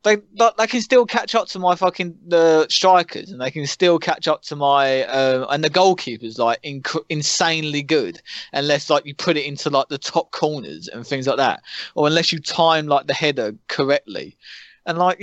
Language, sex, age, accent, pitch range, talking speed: English, male, 20-39, British, 140-185 Hz, 200 wpm